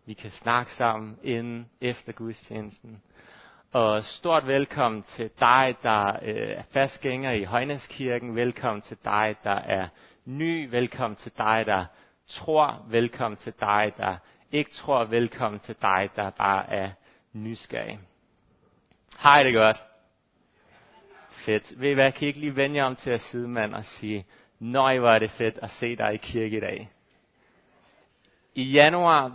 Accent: native